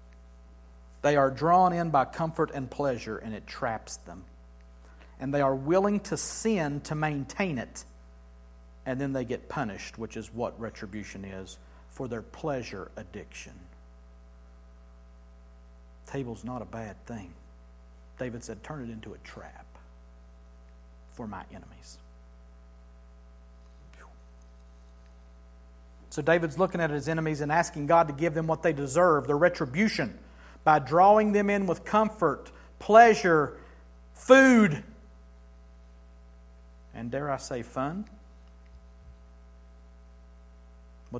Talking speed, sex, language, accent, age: 120 wpm, male, English, American, 50-69